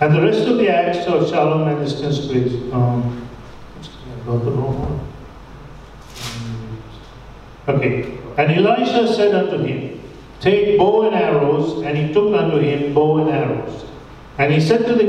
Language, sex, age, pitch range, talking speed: English, male, 50-69, 135-175 Hz, 140 wpm